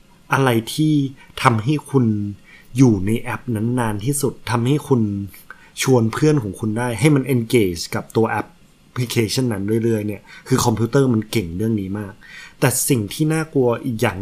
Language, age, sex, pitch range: Thai, 20-39, male, 105-130 Hz